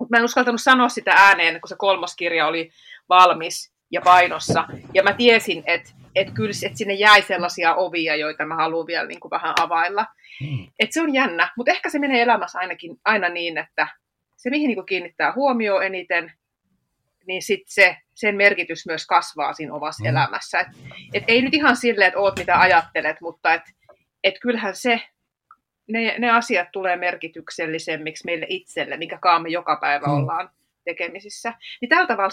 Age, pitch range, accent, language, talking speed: 30-49, 170-225 Hz, native, Finnish, 160 wpm